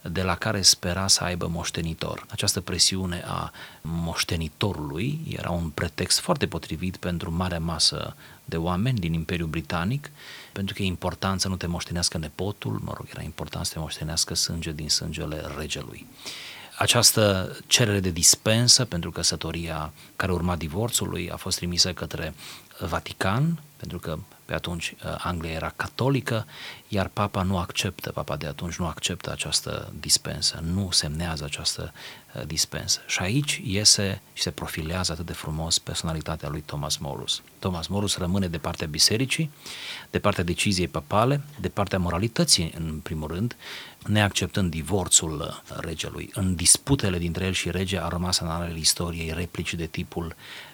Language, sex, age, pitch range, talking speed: Romanian, male, 30-49, 85-100 Hz, 150 wpm